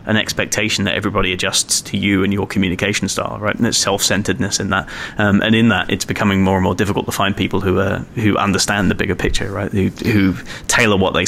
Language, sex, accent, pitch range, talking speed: English, male, British, 95-120 Hz, 230 wpm